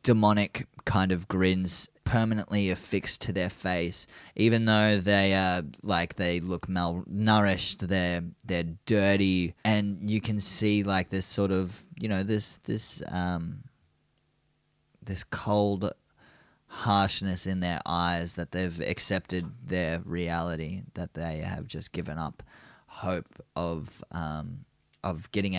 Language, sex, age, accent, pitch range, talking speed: English, male, 20-39, Australian, 90-100 Hz, 130 wpm